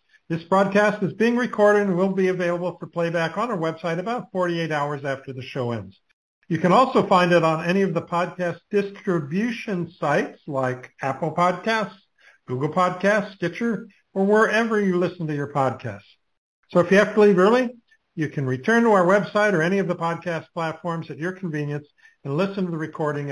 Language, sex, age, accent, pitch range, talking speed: English, male, 60-79, American, 145-200 Hz, 190 wpm